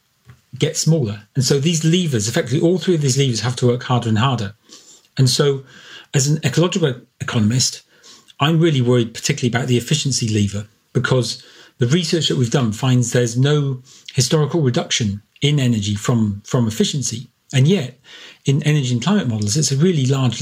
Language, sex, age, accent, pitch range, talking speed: English, male, 40-59, British, 120-155 Hz, 175 wpm